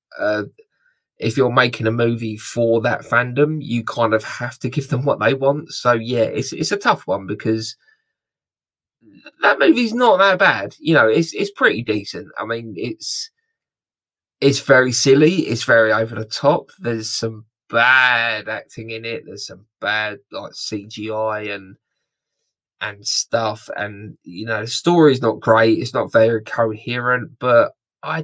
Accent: British